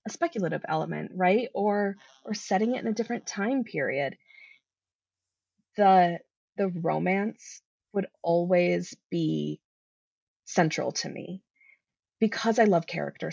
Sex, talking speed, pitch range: female, 115 wpm, 175-235 Hz